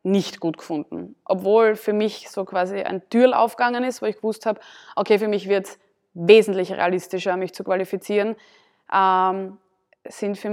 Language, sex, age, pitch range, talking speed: German, female, 20-39, 185-210 Hz, 165 wpm